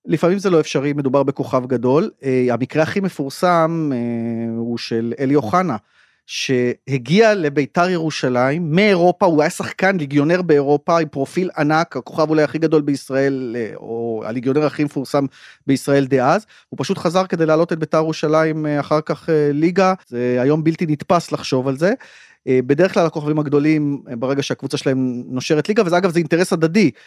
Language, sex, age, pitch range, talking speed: Hebrew, male, 30-49, 135-170 Hz, 155 wpm